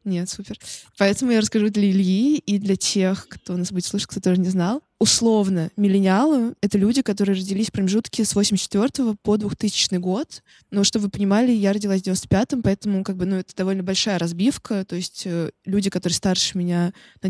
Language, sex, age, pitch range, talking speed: Russian, female, 20-39, 185-210 Hz, 195 wpm